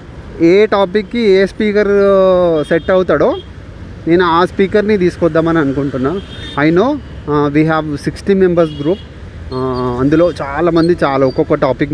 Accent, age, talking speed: native, 30-49, 110 wpm